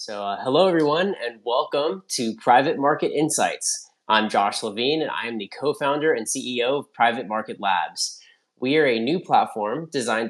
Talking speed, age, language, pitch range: 175 wpm, 30-49, English, 110-145 Hz